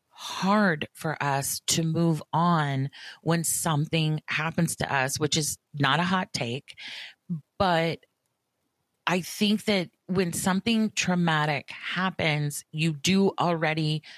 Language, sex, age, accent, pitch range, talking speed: English, female, 30-49, American, 145-175 Hz, 120 wpm